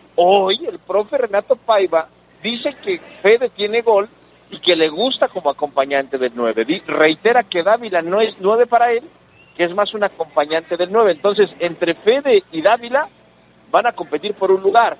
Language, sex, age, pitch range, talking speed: Spanish, male, 50-69, 150-215 Hz, 175 wpm